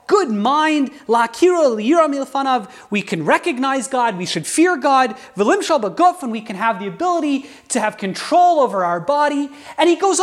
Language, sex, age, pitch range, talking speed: English, male, 30-49, 220-320 Hz, 145 wpm